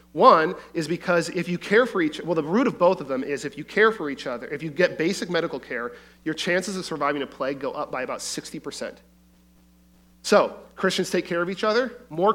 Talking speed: 230 wpm